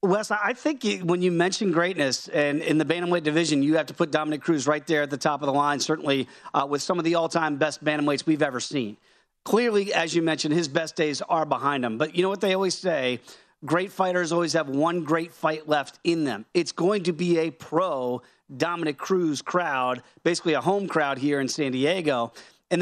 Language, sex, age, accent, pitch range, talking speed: English, male, 40-59, American, 150-190 Hz, 220 wpm